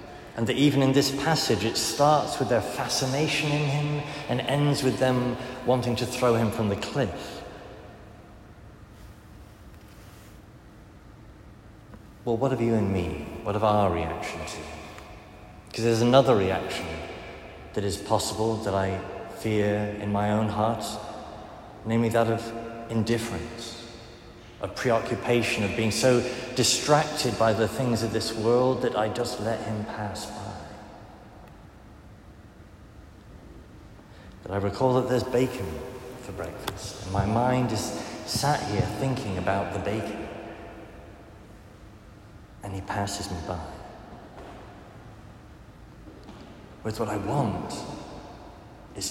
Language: English